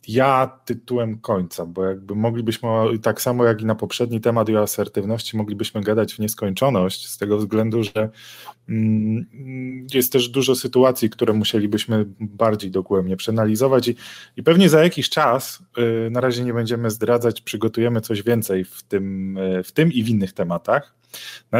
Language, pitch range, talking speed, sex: Polish, 100-120 Hz, 155 wpm, male